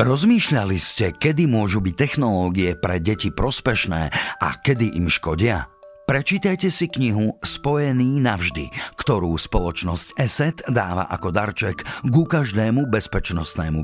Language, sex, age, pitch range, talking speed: Slovak, male, 50-69, 80-120 Hz, 115 wpm